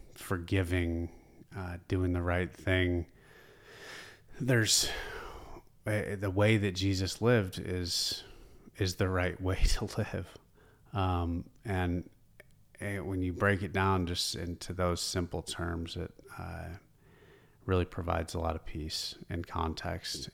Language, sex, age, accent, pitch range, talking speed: English, male, 30-49, American, 85-95 Hz, 125 wpm